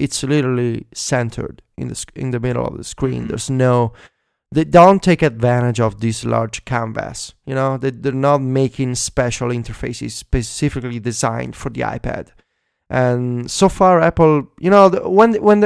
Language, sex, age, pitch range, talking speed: English, male, 20-39, 120-155 Hz, 170 wpm